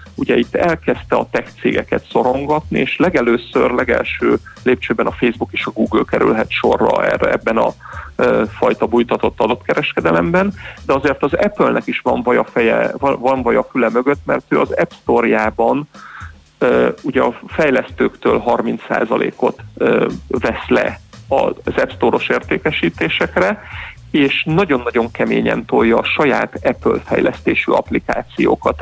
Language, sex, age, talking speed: Hungarian, male, 40-59, 130 wpm